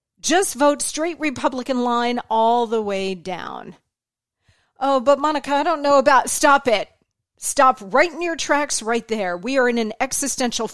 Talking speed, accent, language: 170 wpm, American, English